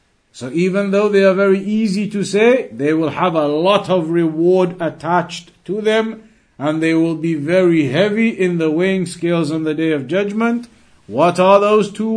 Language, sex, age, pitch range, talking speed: English, male, 50-69, 160-200 Hz, 185 wpm